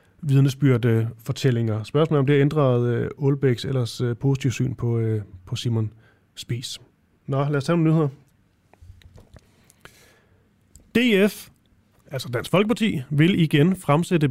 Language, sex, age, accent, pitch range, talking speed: Danish, male, 30-49, native, 120-165 Hz, 120 wpm